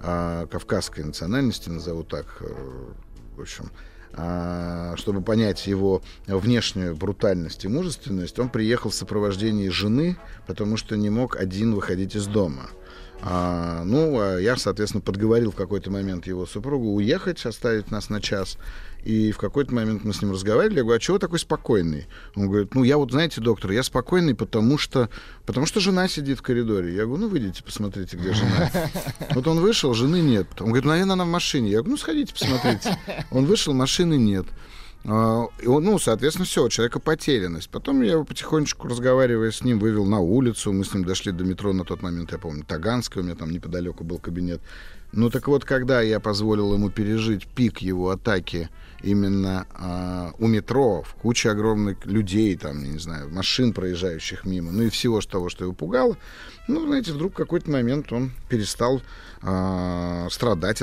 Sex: male